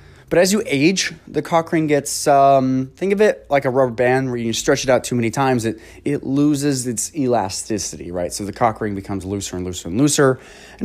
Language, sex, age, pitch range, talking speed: English, male, 20-39, 105-145 Hz, 225 wpm